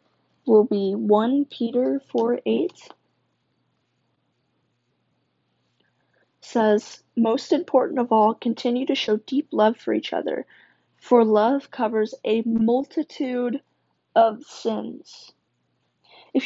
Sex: female